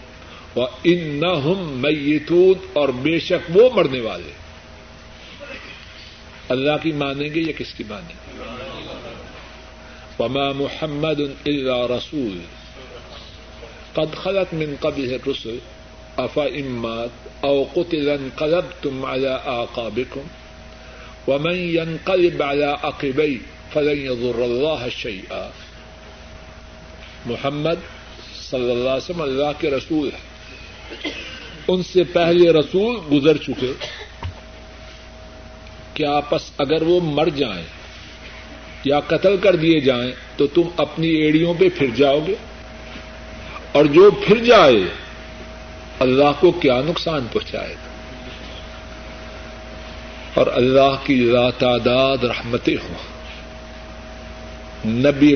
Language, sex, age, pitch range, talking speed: Urdu, male, 60-79, 110-155 Hz, 85 wpm